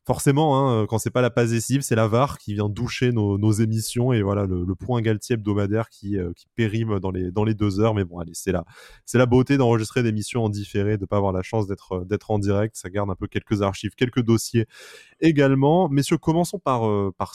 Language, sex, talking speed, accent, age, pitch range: French, male, 245 wpm, French, 20-39, 95-120 Hz